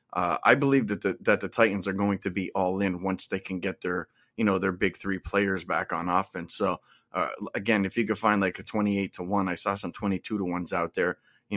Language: English